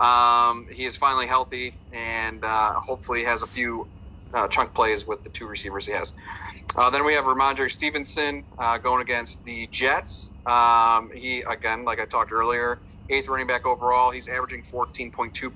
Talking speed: 175 wpm